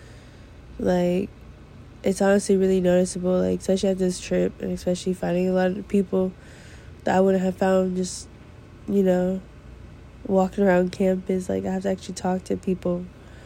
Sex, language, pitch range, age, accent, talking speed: female, English, 175-190 Hz, 20-39, American, 160 wpm